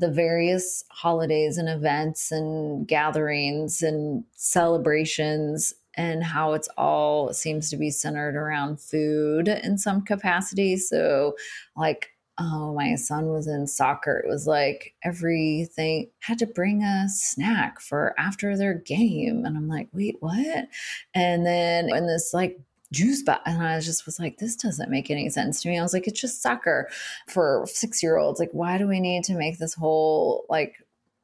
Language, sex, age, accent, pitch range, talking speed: English, female, 20-39, American, 155-200 Hz, 165 wpm